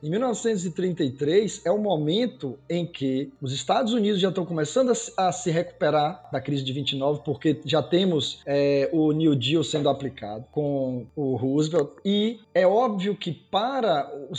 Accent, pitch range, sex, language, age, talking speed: Brazilian, 150-205 Hz, male, Portuguese, 20-39, 160 wpm